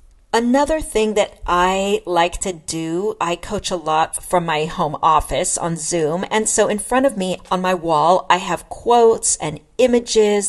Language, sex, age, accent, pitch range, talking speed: English, female, 40-59, American, 165-210 Hz, 175 wpm